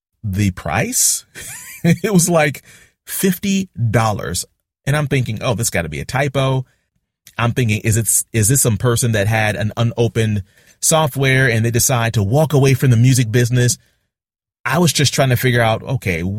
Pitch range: 100-140 Hz